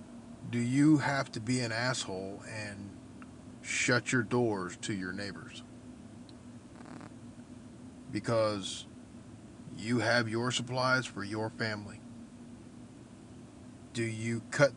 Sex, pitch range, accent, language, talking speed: male, 115-130 Hz, American, English, 100 wpm